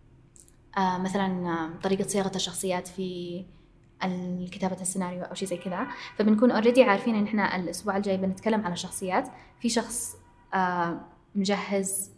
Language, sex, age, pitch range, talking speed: Arabic, female, 20-39, 180-210 Hz, 120 wpm